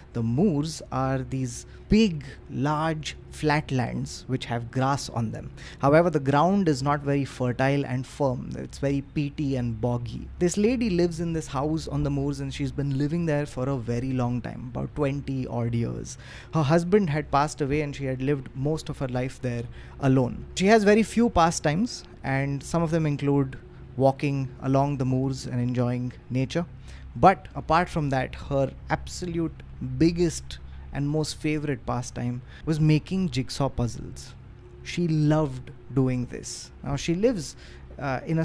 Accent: Indian